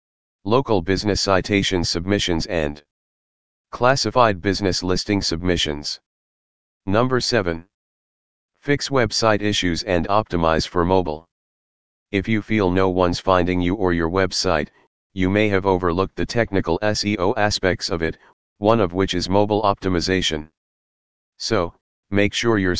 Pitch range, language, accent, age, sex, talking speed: 85-105 Hz, English, American, 40-59, male, 125 wpm